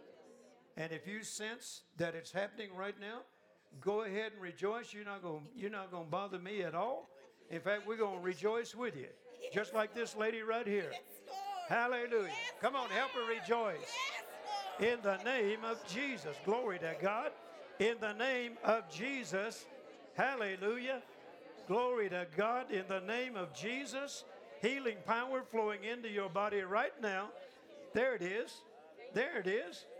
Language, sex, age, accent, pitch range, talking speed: English, male, 60-79, American, 195-260 Hz, 155 wpm